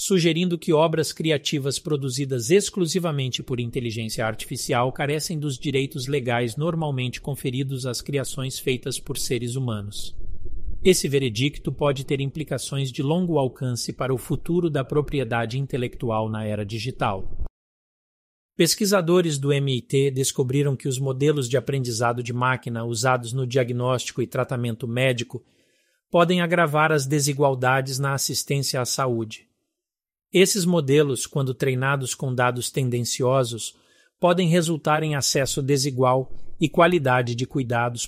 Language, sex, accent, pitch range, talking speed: Portuguese, male, Brazilian, 125-155 Hz, 125 wpm